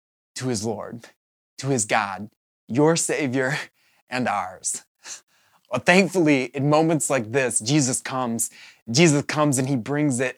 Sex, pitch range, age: male, 115-140 Hz, 20-39